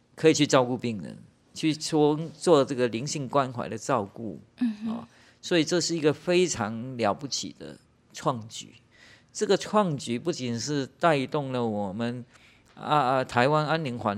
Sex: male